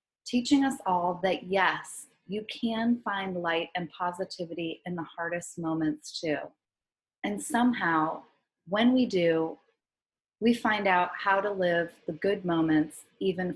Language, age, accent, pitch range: English, 30-49, American, 165-215 Hz